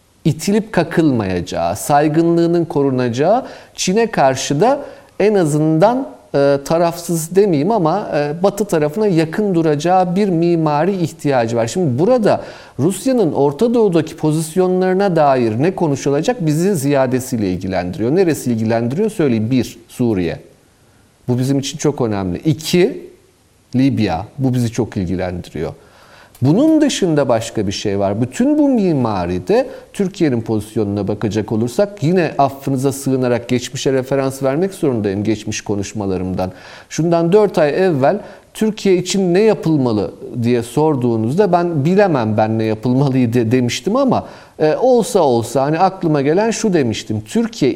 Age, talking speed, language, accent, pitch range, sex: 40-59, 120 wpm, Turkish, native, 115-185 Hz, male